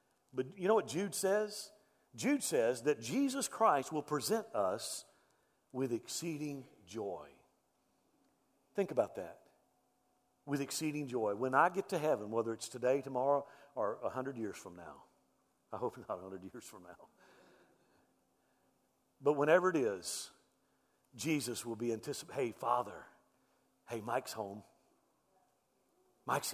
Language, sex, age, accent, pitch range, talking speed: English, male, 50-69, American, 135-215 Hz, 135 wpm